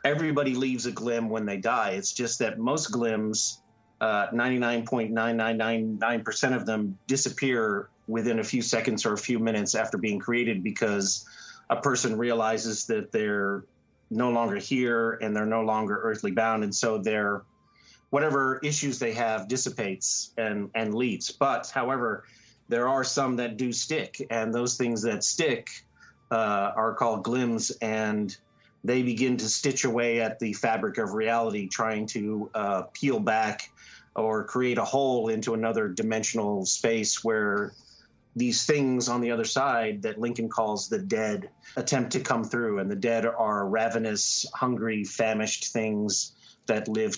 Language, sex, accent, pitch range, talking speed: English, male, American, 110-125 Hz, 160 wpm